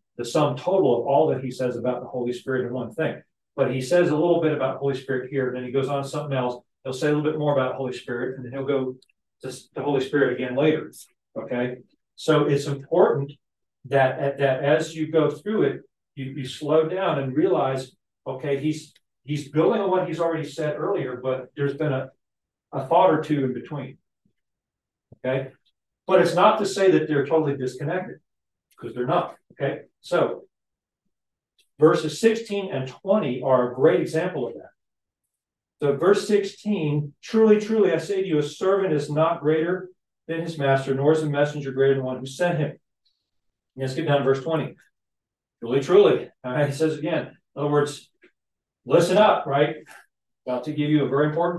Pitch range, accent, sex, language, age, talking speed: 135-170 Hz, American, male, English, 40-59, 195 wpm